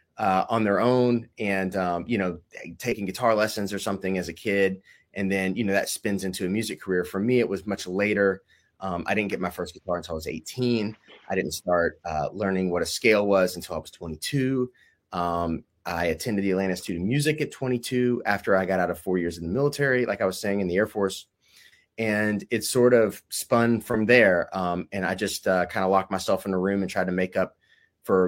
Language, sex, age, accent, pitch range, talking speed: English, male, 30-49, American, 95-120 Hz, 230 wpm